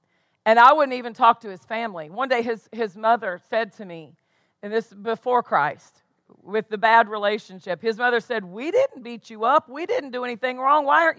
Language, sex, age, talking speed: English, female, 40-59, 210 wpm